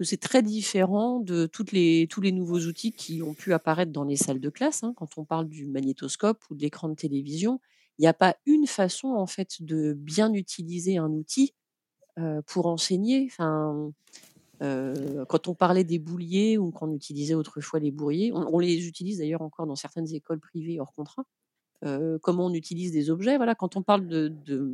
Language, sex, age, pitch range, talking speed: French, female, 40-59, 155-195 Hz, 200 wpm